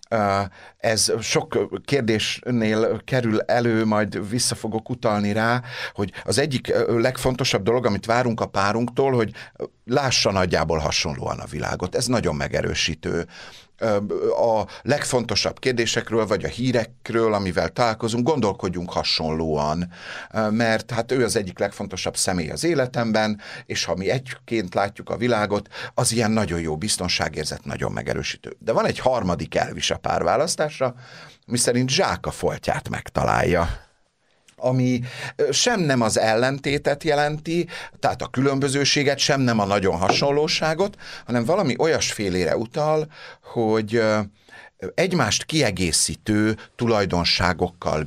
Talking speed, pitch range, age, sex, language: 120 wpm, 100-130 Hz, 60-79, male, Hungarian